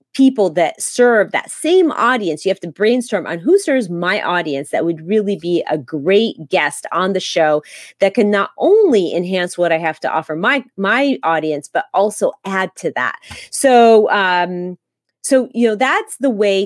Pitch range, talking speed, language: 170-250 Hz, 185 wpm, English